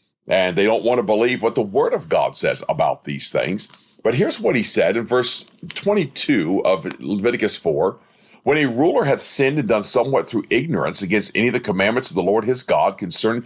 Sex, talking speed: male, 210 wpm